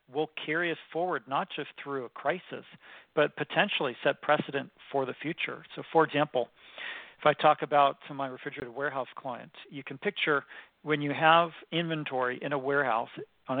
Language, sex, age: English, male, 40-59